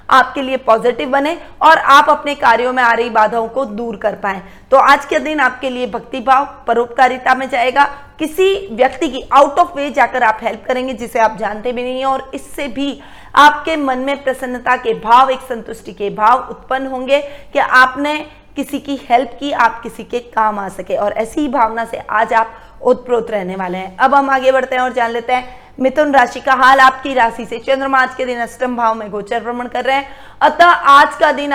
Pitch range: 240-280 Hz